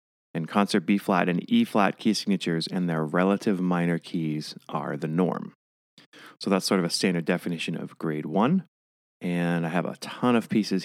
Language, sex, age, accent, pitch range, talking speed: English, male, 30-49, American, 80-95 Hz, 175 wpm